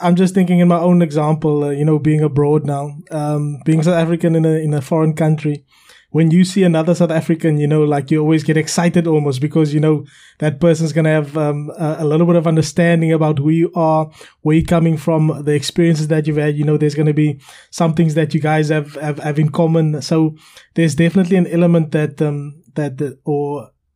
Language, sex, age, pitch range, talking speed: English, male, 20-39, 150-165 Hz, 225 wpm